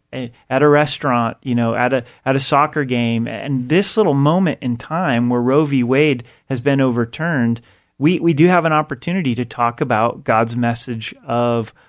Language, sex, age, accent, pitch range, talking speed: English, male, 30-49, American, 120-145 Hz, 180 wpm